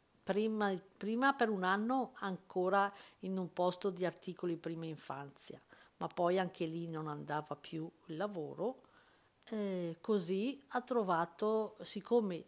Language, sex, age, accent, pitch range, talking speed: Italian, female, 50-69, native, 165-210 Hz, 125 wpm